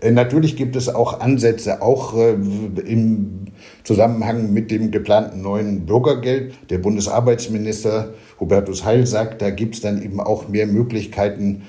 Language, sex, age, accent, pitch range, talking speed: German, male, 60-79, German, 100-115 Hz, 135 wpm